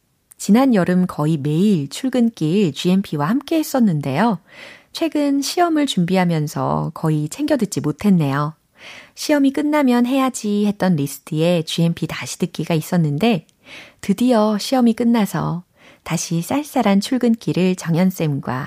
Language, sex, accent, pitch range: Korean, female, native, 155-225 Hz